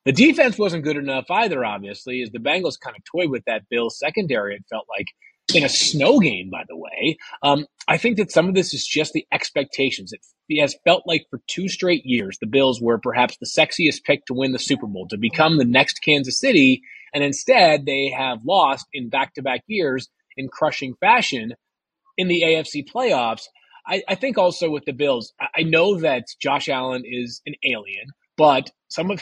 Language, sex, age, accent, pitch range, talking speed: English, male, 30-49, American, 130-175 Hz, 200 wpm